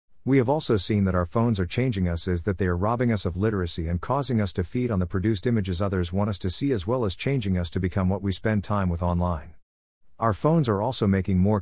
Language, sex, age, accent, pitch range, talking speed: English, male, 50-69, American, 90-115 Hz, 265 wpm